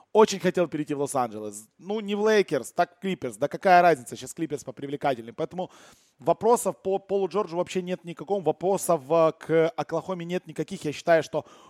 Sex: male